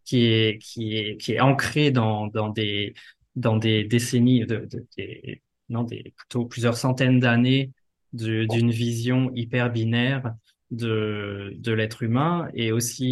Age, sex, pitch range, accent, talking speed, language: 20-39, male, 110-130 Hz, French, 155 wpm, French